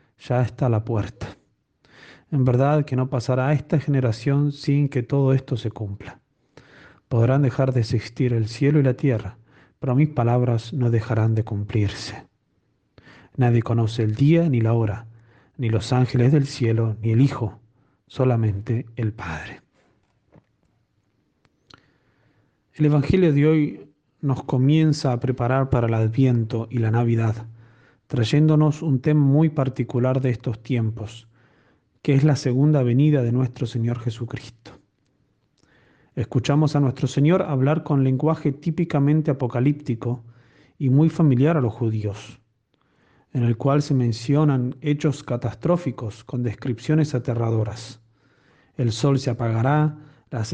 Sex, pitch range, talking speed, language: male, 115-145 Hz, 135 wpm, Spanish